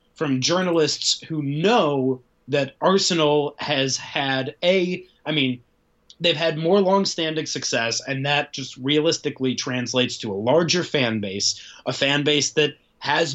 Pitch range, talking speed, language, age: 135-170 Hz, 140 wpm, English, 20-39